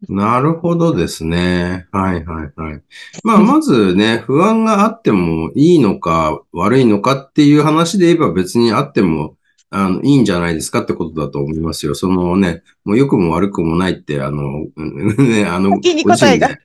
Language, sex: Japanese, male